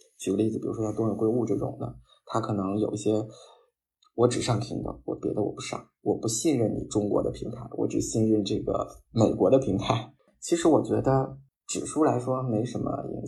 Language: Chinese